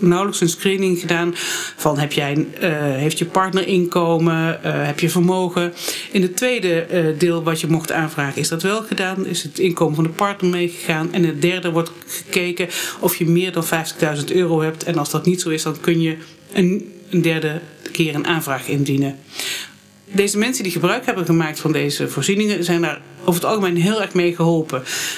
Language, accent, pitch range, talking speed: Dutch, Dutch, 165-195 Hz, 190 wpm